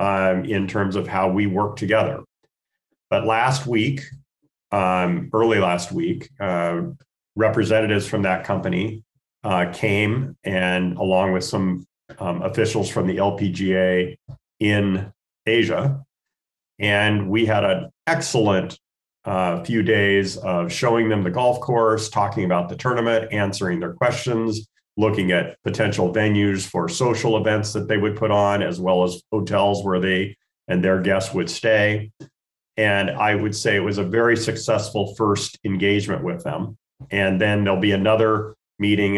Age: 40-59